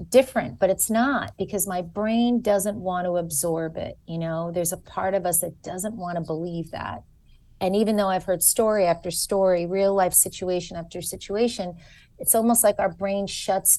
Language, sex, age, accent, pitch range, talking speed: English, female, 30-49, American, 180-205 Hz, 190 wpm